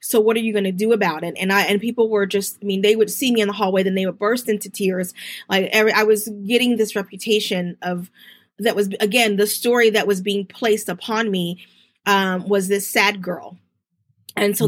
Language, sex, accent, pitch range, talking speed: English, female, American, 195-225 Hz, 230 wpm